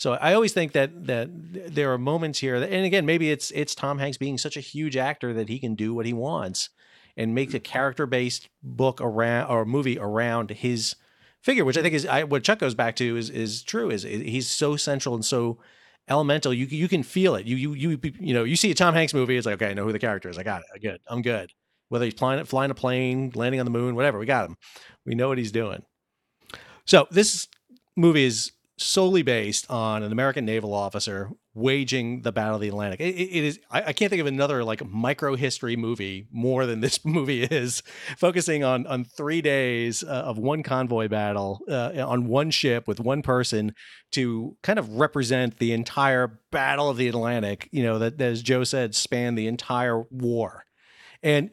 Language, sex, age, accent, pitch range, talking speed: English, male, 40-59, American, 115-145 Hz, 215 wpm